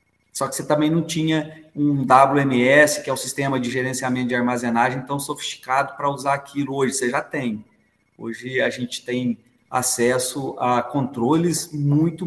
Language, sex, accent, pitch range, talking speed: Portuguese, male, Brazilian, 120-145 Hz, 160 wpm